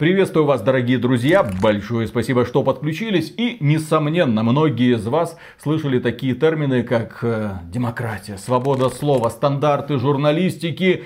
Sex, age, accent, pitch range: male, 30-49, native, 120-170 Hz